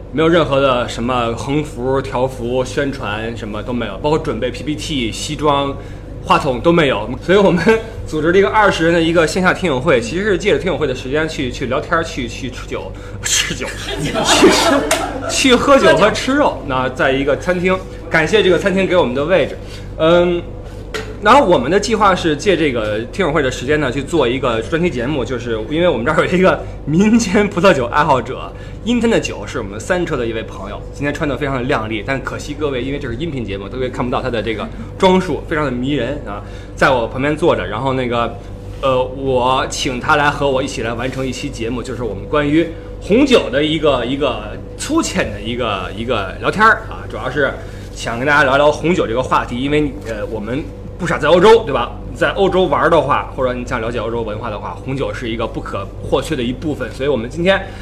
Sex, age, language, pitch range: male, 20-39, Chinese, 120-165 Hz